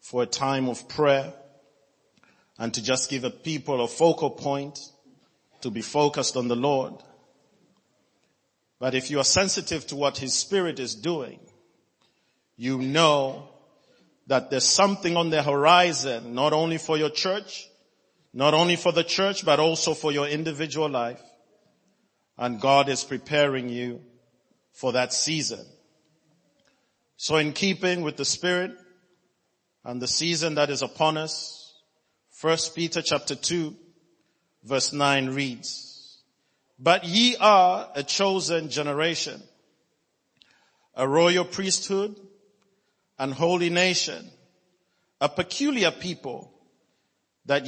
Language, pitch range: English, 135-180 Hz